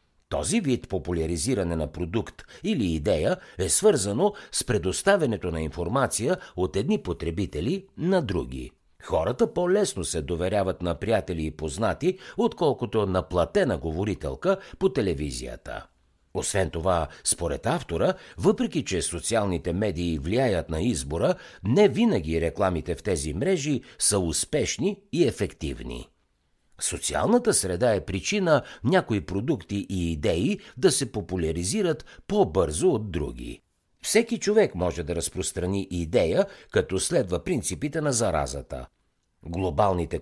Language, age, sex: Bulgarian, 60-79, male